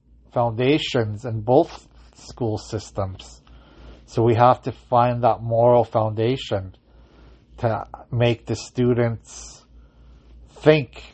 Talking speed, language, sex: 95 wpm, English, male